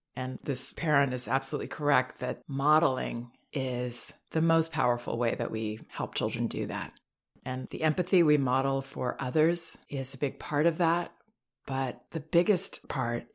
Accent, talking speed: American, 160 wpm